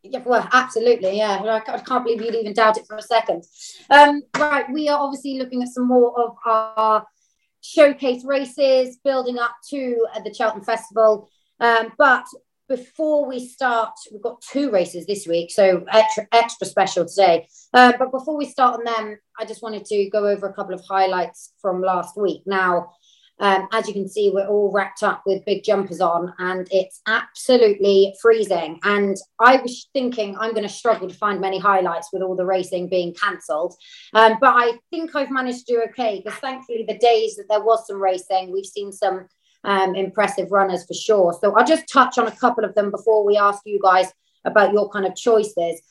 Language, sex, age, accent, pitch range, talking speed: English, female, 30-49, British, 195-250 Hz, 195 wpm